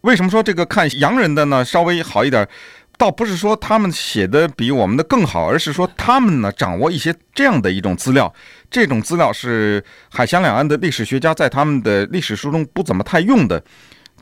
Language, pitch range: Chinese, 130-195 Hz